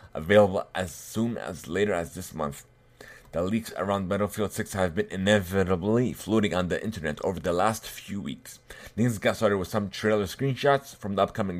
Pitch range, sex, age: 90-115 Hz, male, 30-49